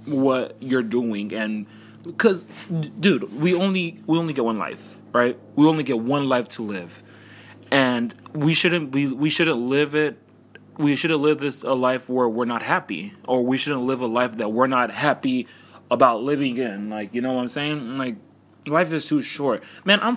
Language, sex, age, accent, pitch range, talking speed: English, male, 20-39, American, 115-150 Hz, 195 wpm